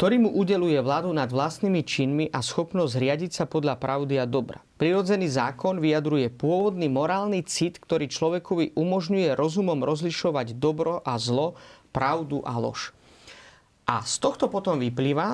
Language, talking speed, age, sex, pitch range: Slovak, 145 wpm, 30-49, male, 140-185 Hz